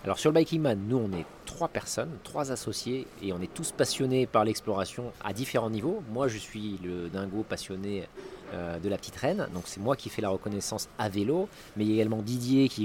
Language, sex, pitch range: French, male, 100-125 Hz